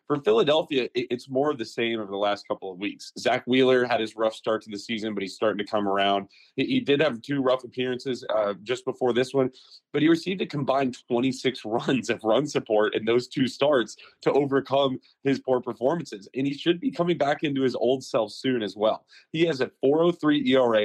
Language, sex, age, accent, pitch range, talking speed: English, male, 30-49, American, 115-145 Hz, 220 wpm